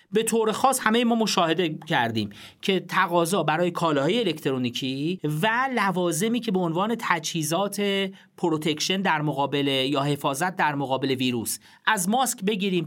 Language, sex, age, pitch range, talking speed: Persian, male, 40-59, 155-220 Hz, 135 wpm